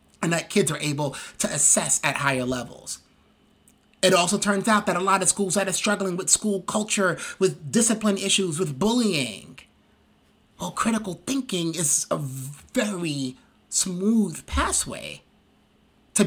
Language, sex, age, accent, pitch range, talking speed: English, male, 30-49, American, 160-200 Hz, 145 wpm